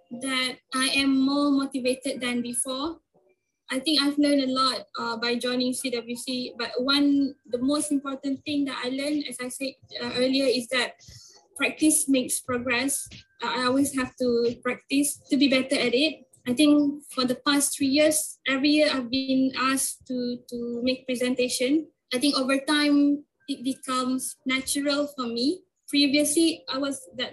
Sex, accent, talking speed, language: female, Malaysian, 165 wpm, English